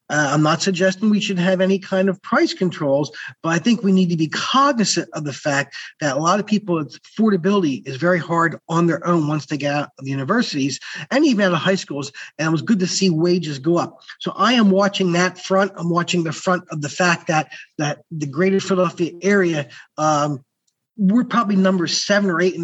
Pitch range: 150-185 Hz